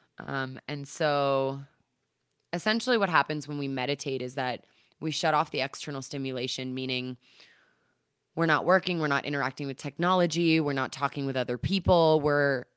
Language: English